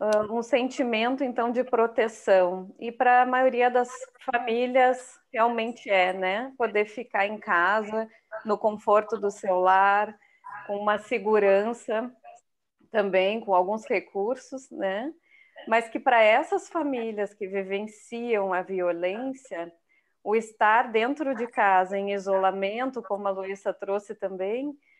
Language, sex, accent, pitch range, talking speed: Portuguese, female, Brazilian, 200-245 Hz, 120 wpm